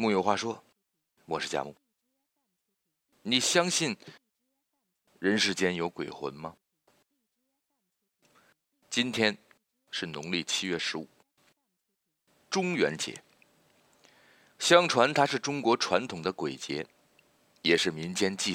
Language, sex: Chinese, male